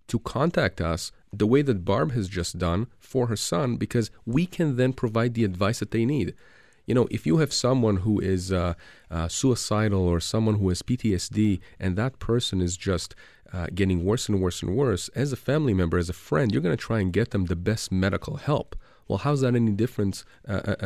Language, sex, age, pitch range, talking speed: English, male, 40-59, 95-120 Hz, 220 wpm